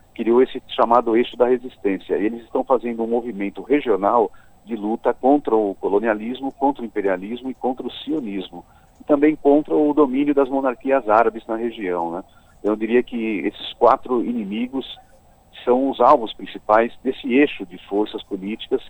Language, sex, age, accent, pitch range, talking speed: Portuguese, male, 40-59, Brazilian, 105-135 Hz, 165 wpm